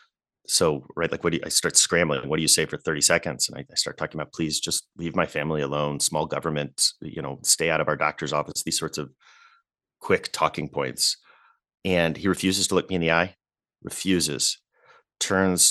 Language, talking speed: English, 210 wpm